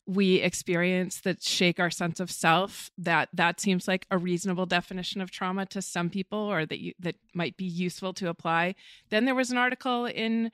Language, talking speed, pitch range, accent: English, 200 wpm, 180-220 Hz, American